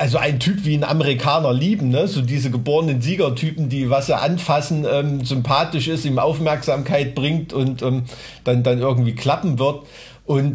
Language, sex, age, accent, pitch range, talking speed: German, male, 50-69, German, 115-140 Hz, 170 wpm